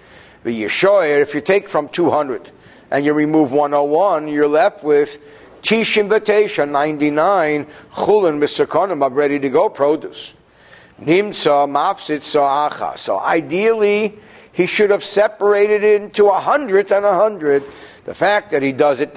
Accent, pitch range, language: American, 145-205 Hz, English